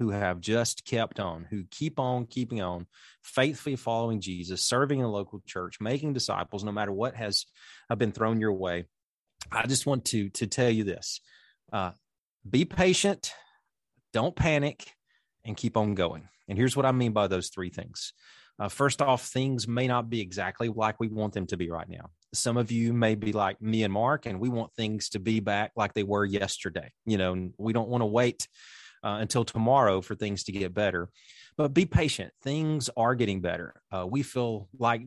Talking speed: 200 wpm